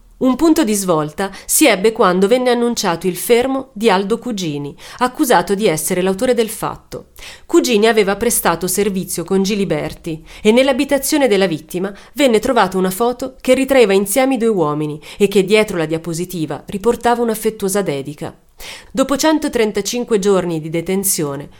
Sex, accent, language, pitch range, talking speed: female, native, Italian, 180-240 Hz, 145 wpm